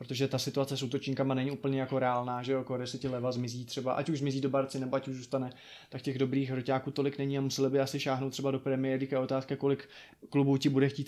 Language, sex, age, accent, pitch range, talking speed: Czech, male, 20-39, native, 135-150 Hz, 250 wpm